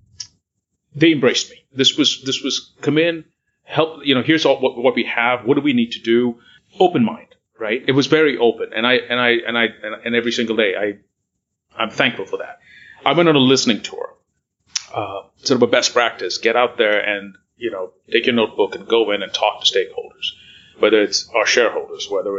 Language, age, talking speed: English, 40-59, 210 wpm